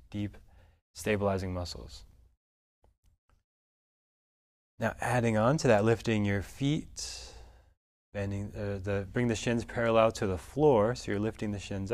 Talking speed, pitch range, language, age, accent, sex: 120 wpm, 95-120 Hz, English, 20-39, American, male